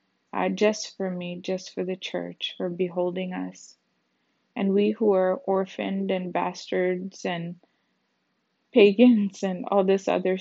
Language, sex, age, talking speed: English, female, 20-39, 140 wpm